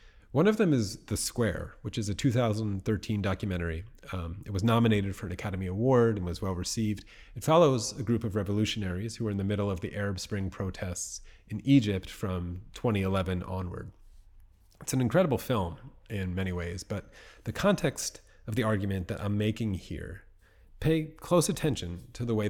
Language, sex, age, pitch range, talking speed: English, male, 30-49, 90-115 Hz, 180 wpm